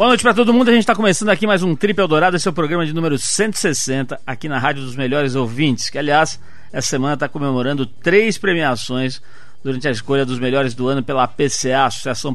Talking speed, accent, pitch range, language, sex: 220 wpm, Brazilian, 135-180 Hz, Portuguese, male